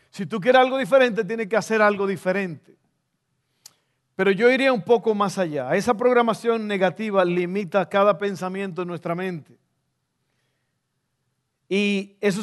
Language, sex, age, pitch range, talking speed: Spanish, male, 50-69, 175-225 Hz, 135 wpm